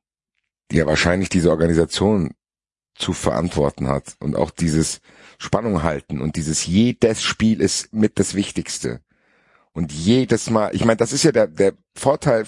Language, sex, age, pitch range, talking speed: German, male, 50-69, 80-110 Hz, 155 wpm